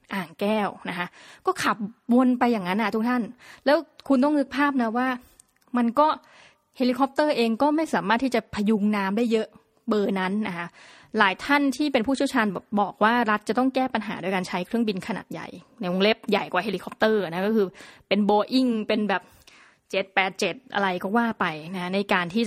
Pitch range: 195-250 Hz